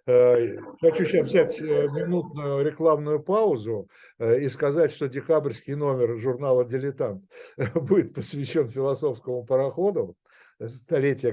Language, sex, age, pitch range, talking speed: Russian, male, 60-79, 120-175 Hz, 95 wpm